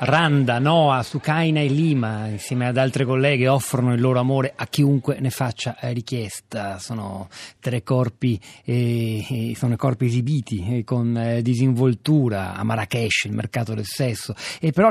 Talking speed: 145 wpm